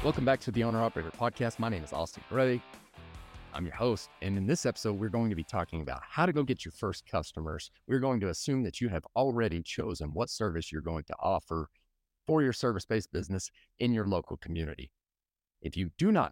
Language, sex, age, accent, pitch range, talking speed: English, male, 30-49, American, 80-115 Hz, 215 wpm